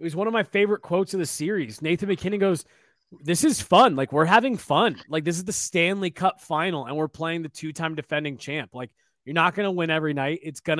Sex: male